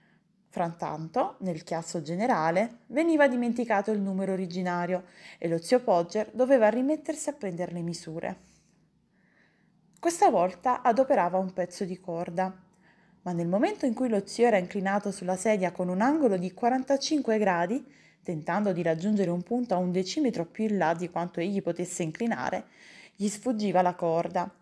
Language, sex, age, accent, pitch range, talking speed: Italian, female, 20-39, native, 180-235 Hz, 155 wpm